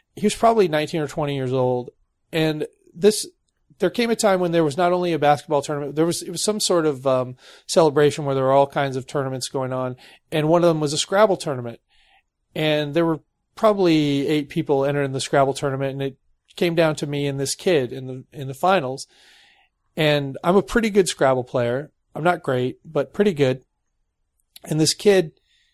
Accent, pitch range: American, 135-180 Hz